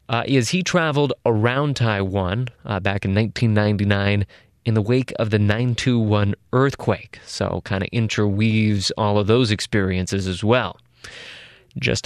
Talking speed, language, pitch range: 140 wpm, English, 105-130 Hz